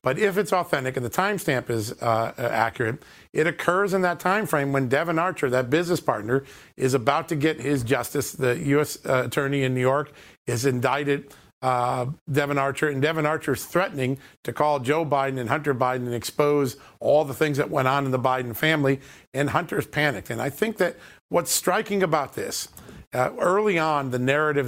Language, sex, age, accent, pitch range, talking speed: English, male, 50-69, American, 125-160 Hz, 195 wpm